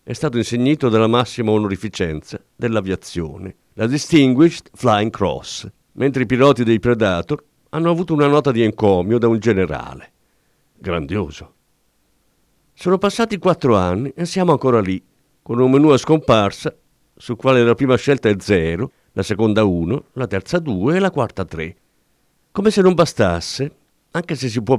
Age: 50-69